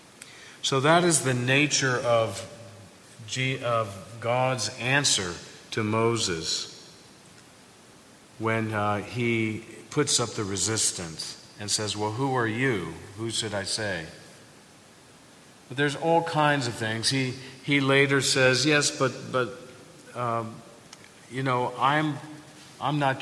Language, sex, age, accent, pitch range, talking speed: English, male, 50-69, American, 100-130 Hz, 125 wpm